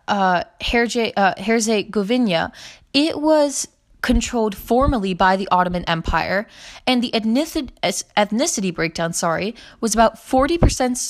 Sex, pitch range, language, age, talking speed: female, 185-250 Hz, English, 20-39, 105 wpm